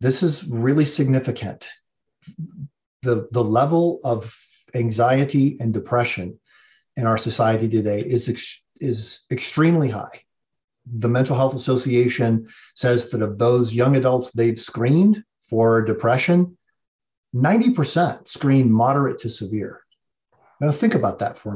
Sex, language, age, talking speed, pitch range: male, English, 50-69, 120 wpm, 115-145 Hz